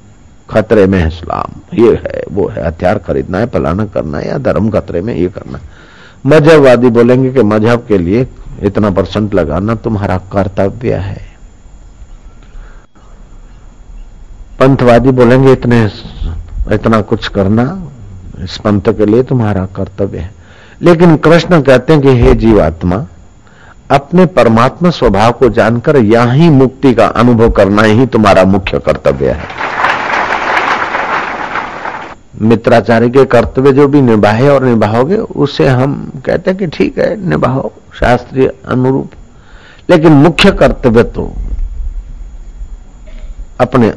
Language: Hindi